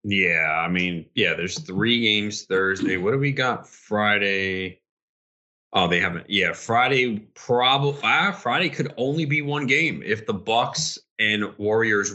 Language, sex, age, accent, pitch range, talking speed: English, male, 30-49, American, 90-120 Hz, 150 wpm